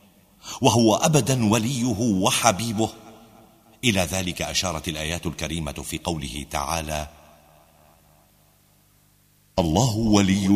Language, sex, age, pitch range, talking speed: Arabic, male, 50-69, 80-115 Hz, 80 wpm